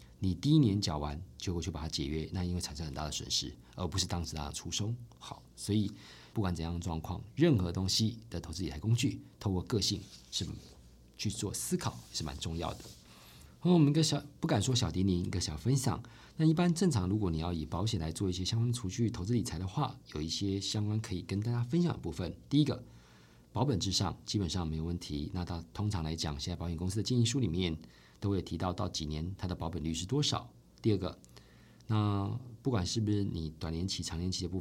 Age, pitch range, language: 50-69, 80-110 Hz, Chinese